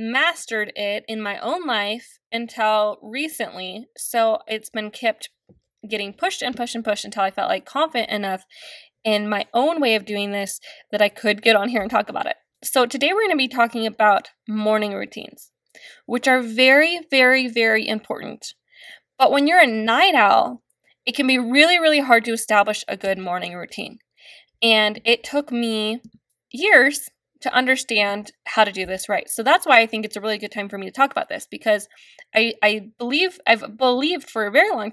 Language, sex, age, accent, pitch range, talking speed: English, female, 20-39, American, 210-265 Hz, 195 wpm